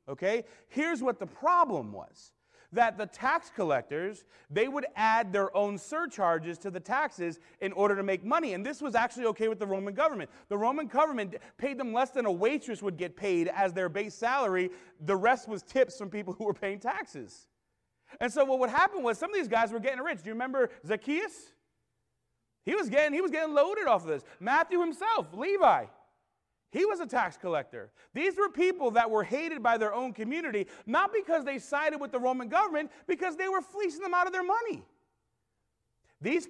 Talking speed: 200 wpm